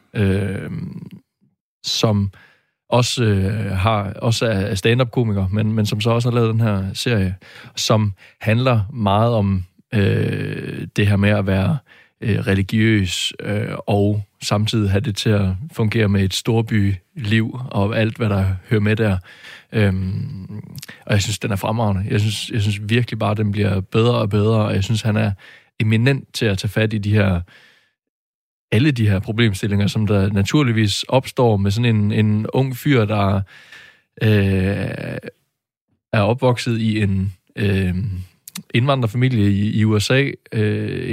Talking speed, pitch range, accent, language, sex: 155 wpm, 100-120 Hz, native, Danish, male